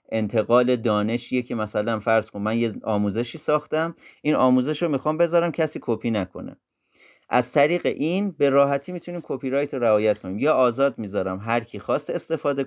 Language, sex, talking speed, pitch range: Persian, male, 160 wpm, 105-145 Hz